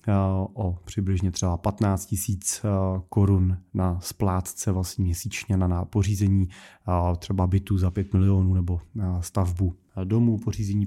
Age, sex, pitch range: 30-49, male, 95-115 Hz